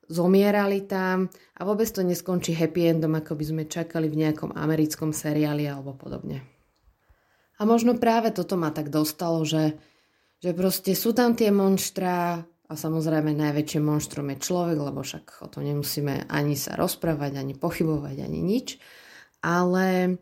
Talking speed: 150 wpm